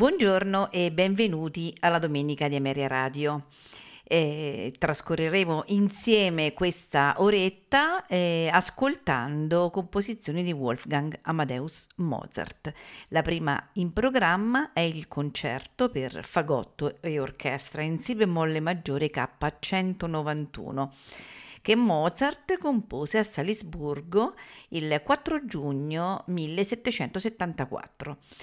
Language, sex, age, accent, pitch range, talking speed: Italian, female, 50-69, native, 150-200 Hz, 95 wpm